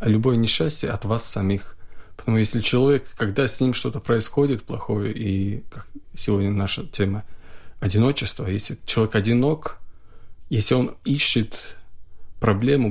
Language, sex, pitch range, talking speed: Russian, male, 100-130 Hz, 125 wpm